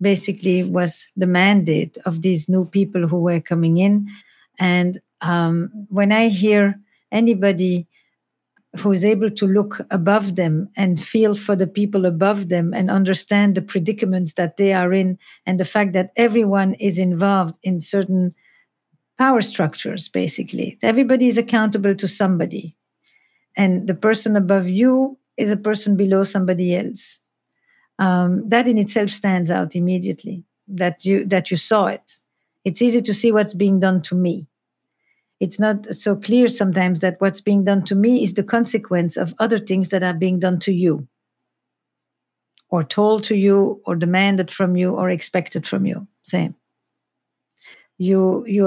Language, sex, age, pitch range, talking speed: English, female, 50-69, 180-210 Hz, 160 wpm